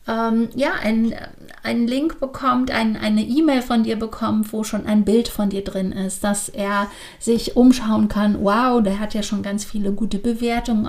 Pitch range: 195-230 Hz